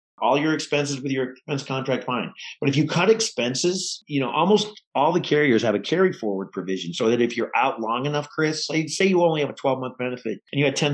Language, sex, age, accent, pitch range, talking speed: English, male, 40-59, American, 110-145 Hz, 240 wpm